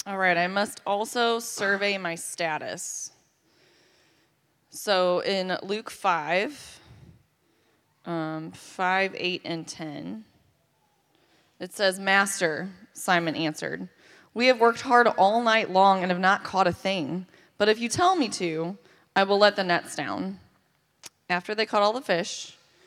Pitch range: 175-215 Hz